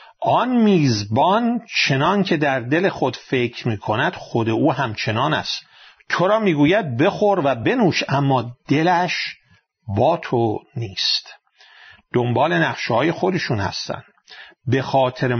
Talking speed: 115 wpm